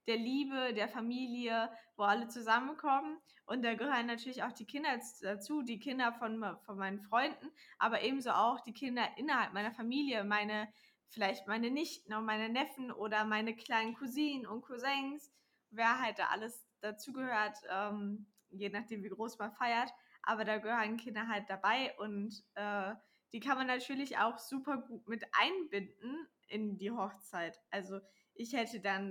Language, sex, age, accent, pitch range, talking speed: German, female, 10-29, German, 215-270 Hz, 160 wpm